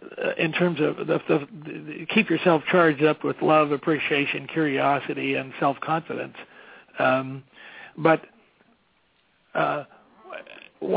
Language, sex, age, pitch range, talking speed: English, male, 60-79, 145-165 Hz, 115 wpm